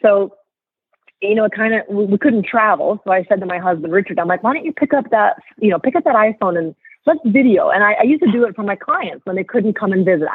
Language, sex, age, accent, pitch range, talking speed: English, female, 30-49, American, 200-255 Hz, 285 wpm